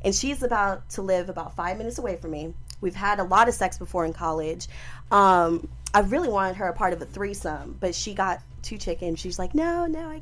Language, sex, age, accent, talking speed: English, female, 20-39, American, 235 wpm